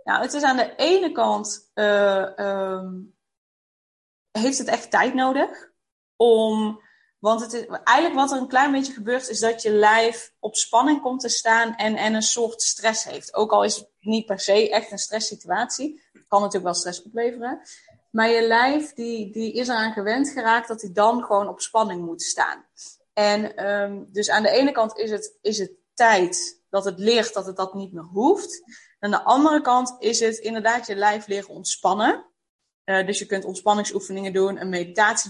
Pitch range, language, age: 205-260 Hz, Dutch, 20-39